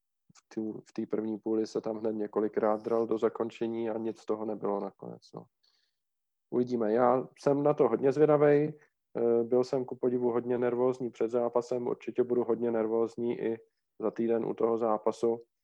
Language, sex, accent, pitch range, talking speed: Czech, male, native, 115-125 Hz, 170 wpm